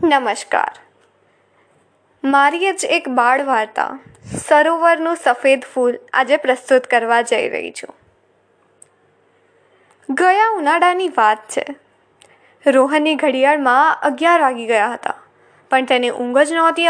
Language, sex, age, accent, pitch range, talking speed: Gujarati, female, 20-39, native, 265-360 Hz, 105 wpm